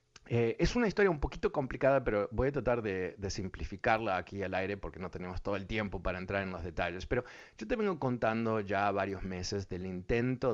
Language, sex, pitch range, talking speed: Spanish, male, 90-105 Hz, 215 wpm